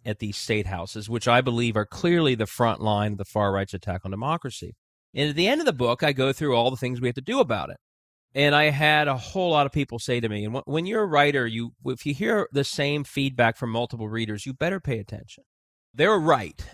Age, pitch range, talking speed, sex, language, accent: 40-59, 125-180 Hz, 245 wpm, male, English, American